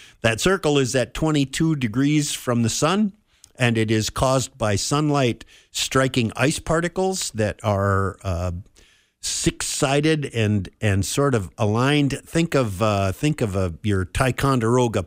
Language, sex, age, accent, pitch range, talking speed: English, male, 50-69, American, 105-135 Hz, 145 wpm